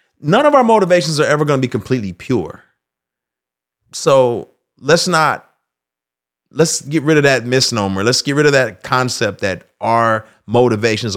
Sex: male